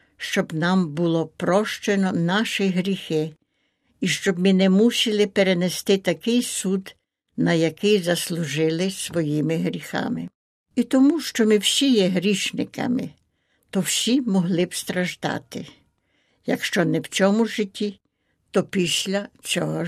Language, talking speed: Ukrainian, 120 wpm